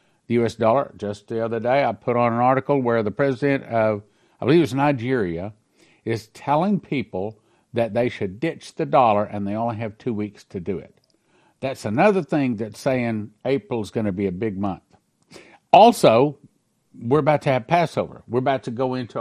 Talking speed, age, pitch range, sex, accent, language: 195 wpm, 50-69, 115-165 Hz, male, American, English